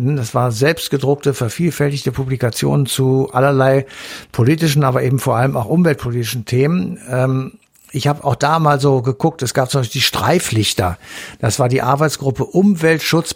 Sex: male